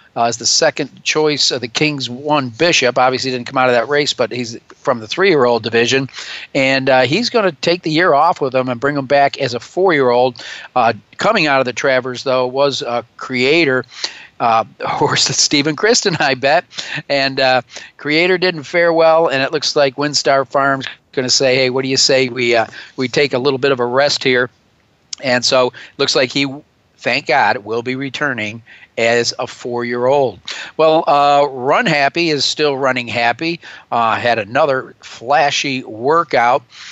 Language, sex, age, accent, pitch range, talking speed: English, male, 50-69, American, 125-145 Hz, 190 wpm